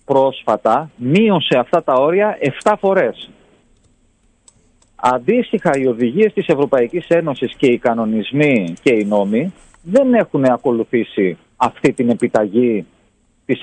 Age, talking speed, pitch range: 40-59, 115 wpm, 120-185 Hz